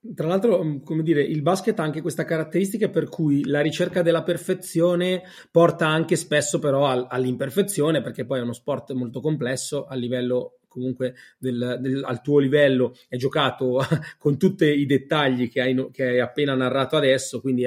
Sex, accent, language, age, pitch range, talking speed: male, native, Italian, 30-49, 130-165 Hz, 170 wpm